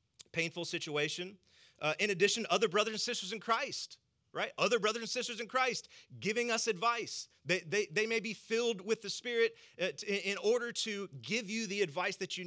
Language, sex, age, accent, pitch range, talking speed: English, male, 30-49, American, 155-205 Hz, 185 wpm